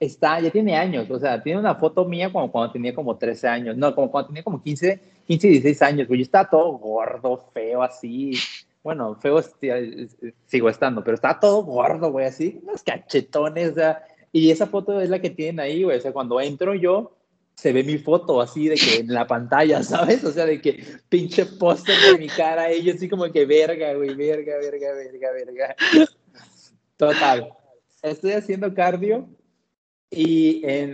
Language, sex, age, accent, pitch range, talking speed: Spanish, male, 30-49, Mexican, 145-190 Hz, 190 wpm